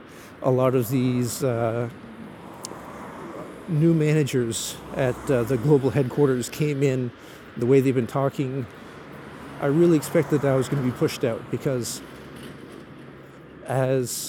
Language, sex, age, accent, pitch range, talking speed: English, male, 50-69, American, 125-145 Hz, 135 wpm